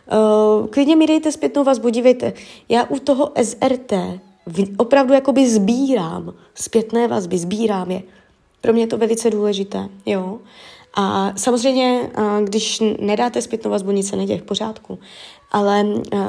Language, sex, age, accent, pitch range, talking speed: Czech, female, 20-39, native, 190-235 Hz, 135 wpm